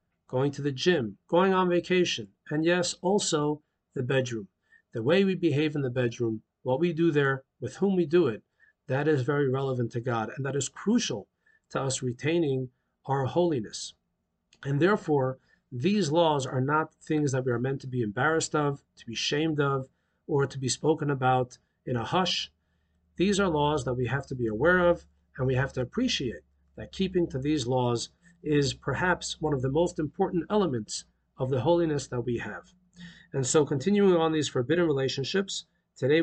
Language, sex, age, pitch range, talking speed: English, male, 50-69, 125-170 Hz, 185 wpm